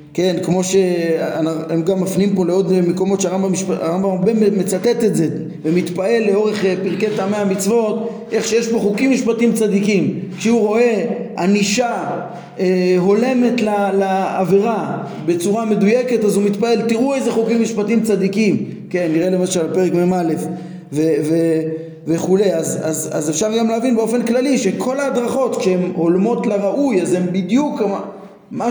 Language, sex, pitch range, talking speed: Hebrew, male, 175-220 Hz, 140 wpm